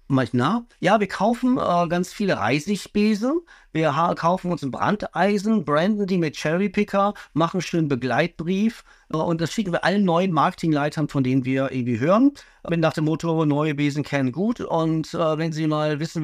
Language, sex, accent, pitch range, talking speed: German, male, German, 140-180 Hz, 180 wpm